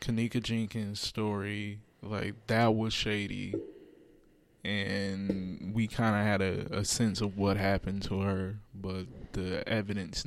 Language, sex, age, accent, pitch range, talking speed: English, male, 20-39, American, 100-120 Hz, 135 wpm